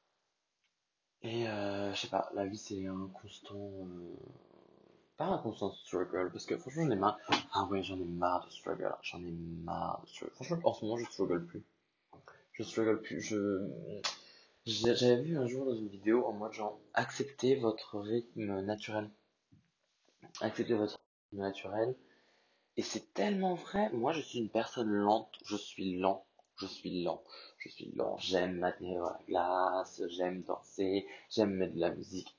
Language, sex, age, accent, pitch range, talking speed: French, male, 20-39, French, 95-120 Hz, 170 wpm